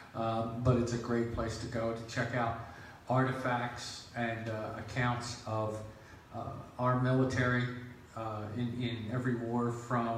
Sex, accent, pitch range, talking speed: male, American, 110-120 Hz, 145 wpm